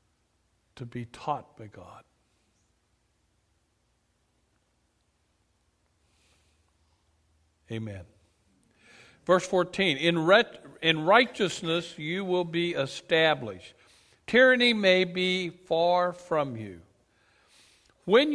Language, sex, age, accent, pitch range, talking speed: English, male, 60-79, American, 115-170 Hz, 75 wpm